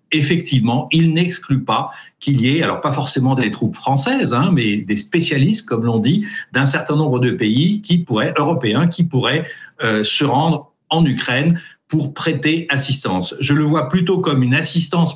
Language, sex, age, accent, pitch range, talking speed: French, male, 60-79, French, 125-160 Hz, 180 wpm